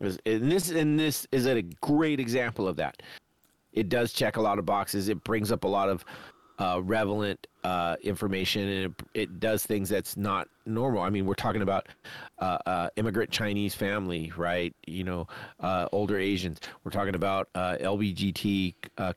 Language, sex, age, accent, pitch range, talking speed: English, male, 40-59, American, 95-125 Hz, 180 wpm